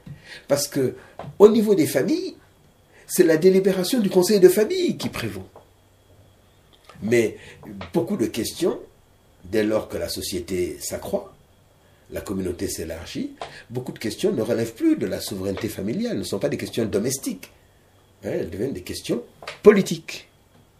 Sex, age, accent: male, 60-79, French